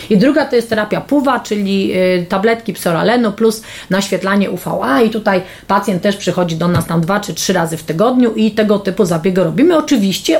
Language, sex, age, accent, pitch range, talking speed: Polish, female, 30-49, native, 190-230 Hz, 190 wpm